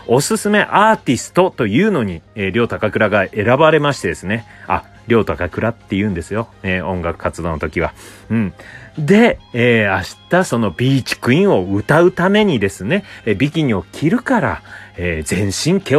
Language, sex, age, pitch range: Japanese, male, 30-49, 95-125 Hz